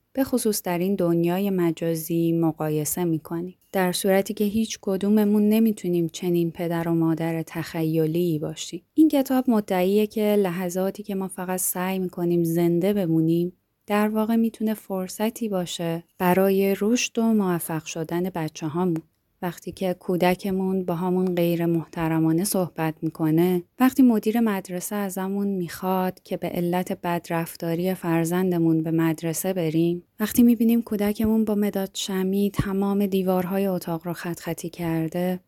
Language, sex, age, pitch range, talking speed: Persian, female, 20-39, 170-210 Hz, 135 wpm